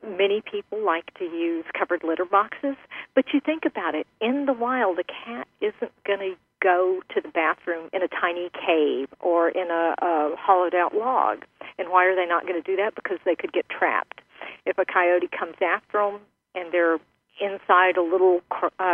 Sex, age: female, 40-59